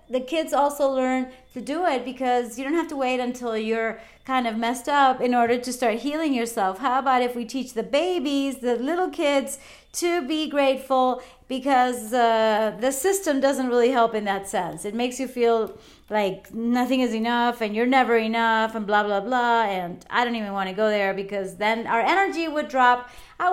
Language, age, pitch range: English, 30-49, 230-295 Hz